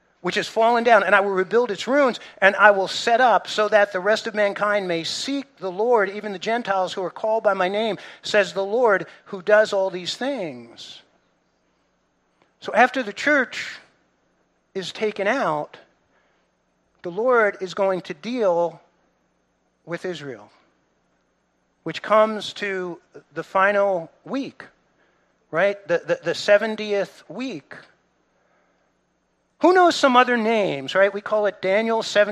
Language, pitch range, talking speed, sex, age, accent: English, 190-250 Hz, 145 wpm, male, 50-69, American